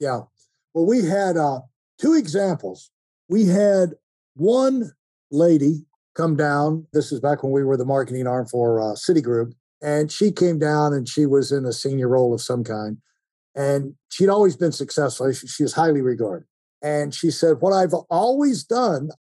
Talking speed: 170 wpm